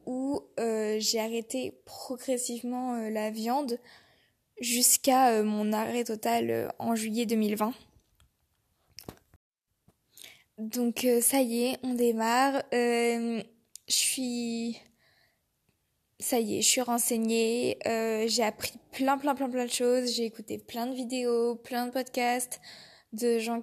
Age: 20-39